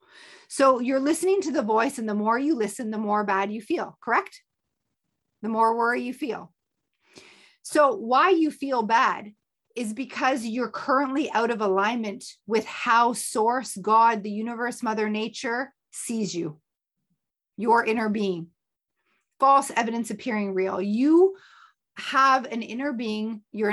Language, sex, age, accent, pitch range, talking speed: English, female, 40-59, American, 200-255 Hz, 145 wpm